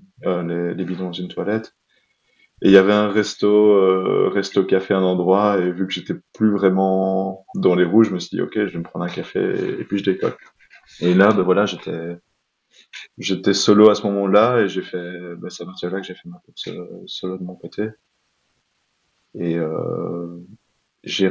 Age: 20-39